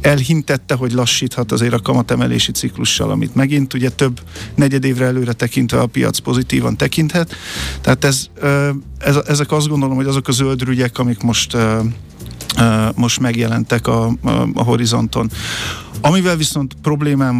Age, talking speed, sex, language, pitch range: 50-69, 135 wpm, male, Hungarian, 115-135 Hz